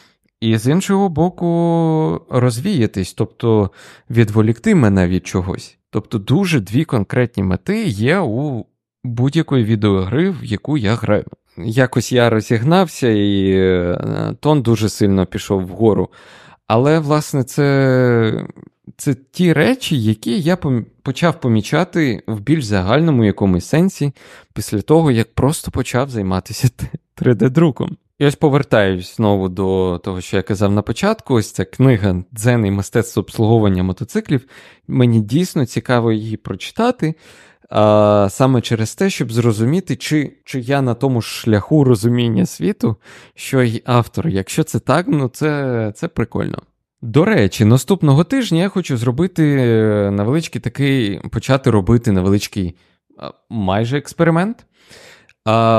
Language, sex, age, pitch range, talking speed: Ukrainian, male, 20-39, 105-150 Hz, 125 wpm